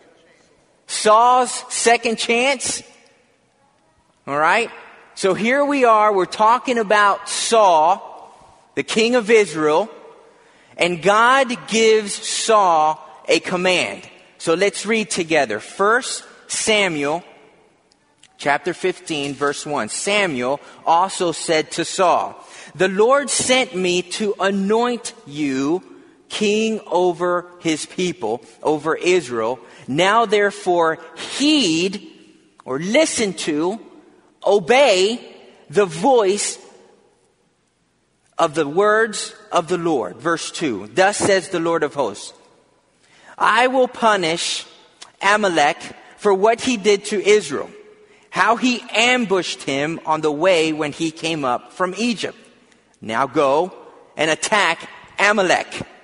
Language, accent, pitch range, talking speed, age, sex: English, American, 175-250 Hz, 110 wpm, 30-49, male